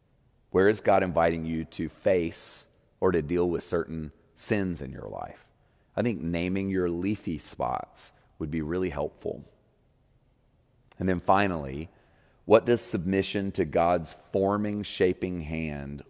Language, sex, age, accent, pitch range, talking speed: English, male, 40-59, American, 75-95 Hz, 140 wpm